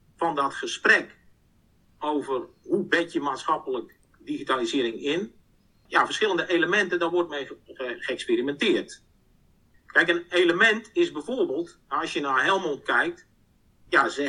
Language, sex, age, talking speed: Dutch, male, 50-69, 120 wpm